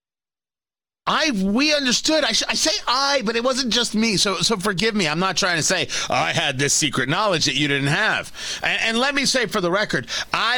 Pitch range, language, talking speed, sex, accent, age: 160-240 Hz, English, 235 wpm, male, American, 40-59